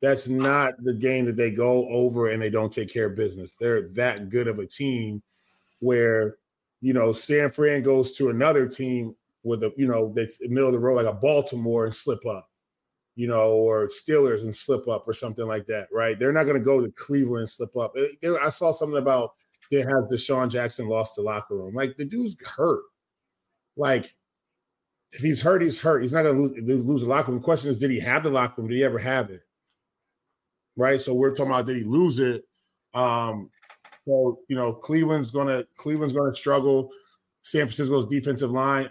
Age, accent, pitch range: 30-49, American, 115-135 Hz